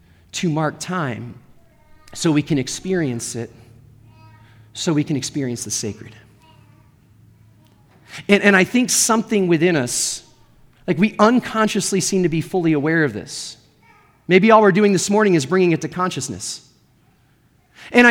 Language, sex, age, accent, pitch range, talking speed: English, male, 40-59, American, 145-215 Hz, 145 wpm